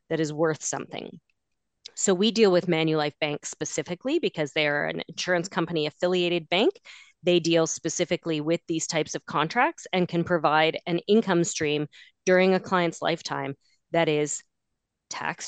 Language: English